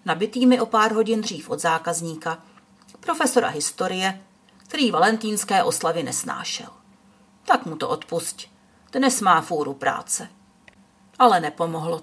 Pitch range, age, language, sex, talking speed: 180-245 Hz, 50-69, Czech, female, 120 wpm